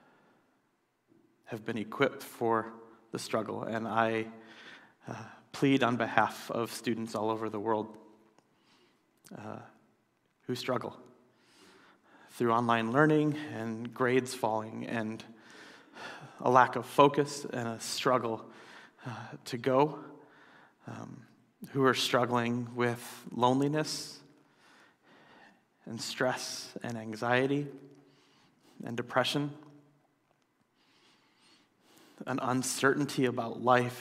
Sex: male